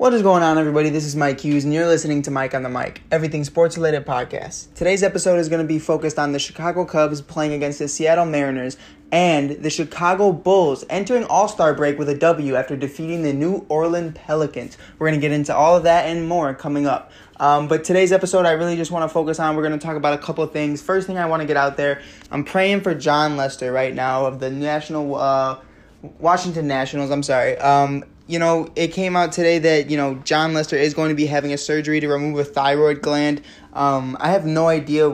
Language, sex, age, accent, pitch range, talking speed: English, male, 20-39, American, 140-165 Hz, 230 wpm